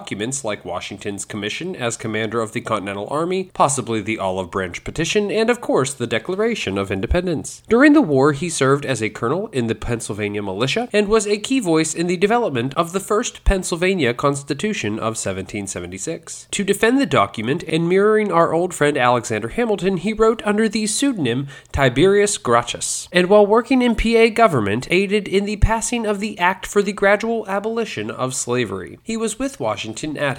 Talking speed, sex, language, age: 180 wpm, male, English, 20-39